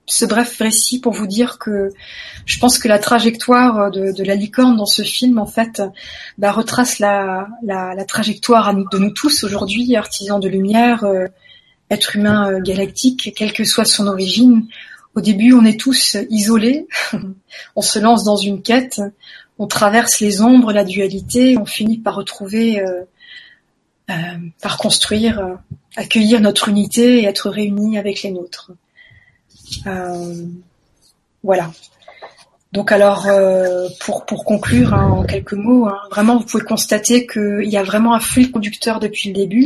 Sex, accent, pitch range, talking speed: female, French, 200-230 Hz, 155 wpm